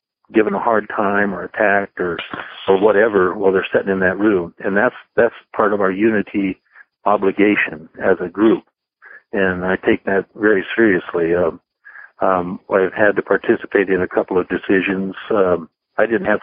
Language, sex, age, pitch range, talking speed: English, male, 60-79, 100-120 Hz, 170 wpm